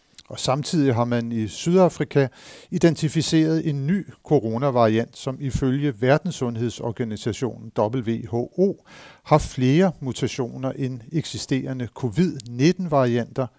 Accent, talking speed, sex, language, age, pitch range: native, 90 wpm, male, Danish, 60-79, 115-145 Hz